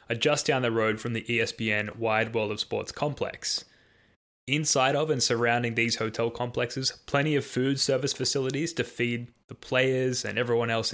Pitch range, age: 110-130 Hz, 10-29